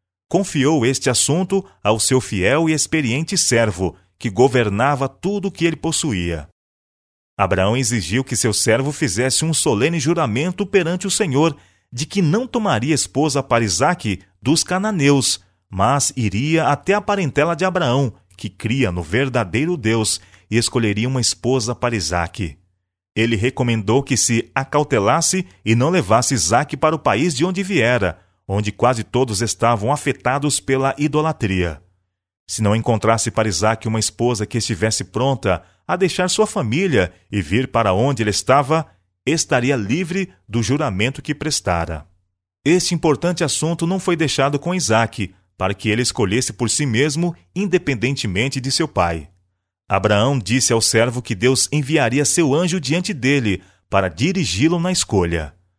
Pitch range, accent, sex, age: 100-155 Hz, Brazilian, male, 40-59